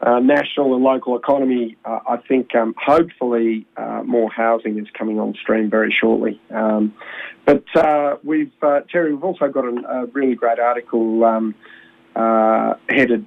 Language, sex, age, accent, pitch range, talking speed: English, male, 40-59, Australian, 110-120 Hz, 160 wpm